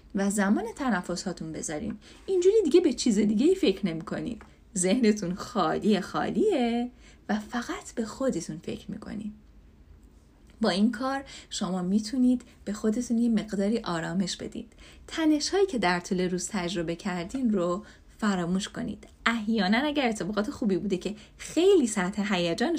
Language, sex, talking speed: Persian, female, 140 wpm